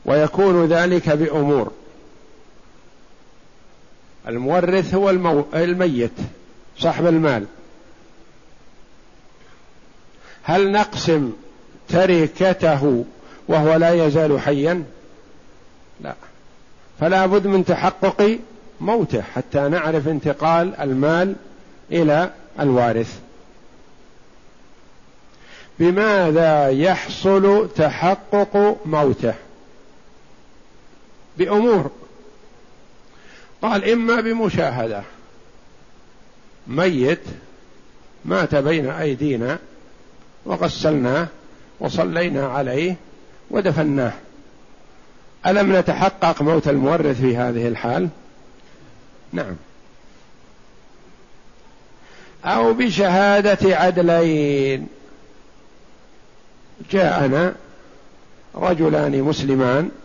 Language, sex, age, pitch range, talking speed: Arabic, male, 50-69, 140-185 Hz, 55 wpm